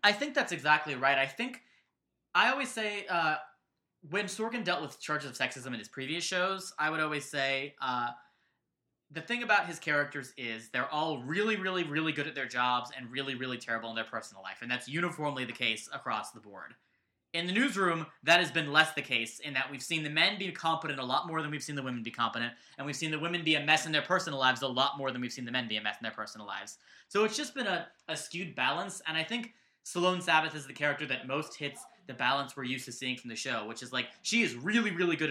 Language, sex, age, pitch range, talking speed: English, male, 20-39, 135-175 Hz, 250 wpm